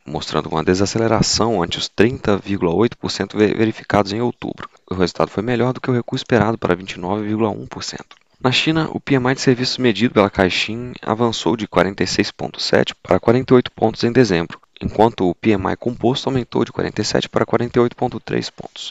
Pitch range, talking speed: 95-125 Hz, 150 wpm